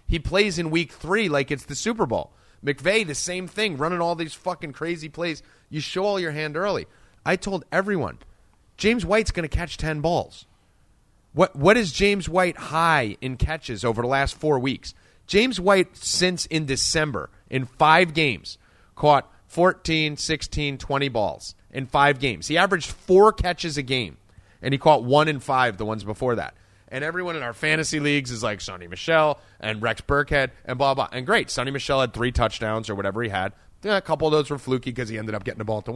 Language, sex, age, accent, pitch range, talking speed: English, male, 30-49, American, 115-160 Hz, 205 wpm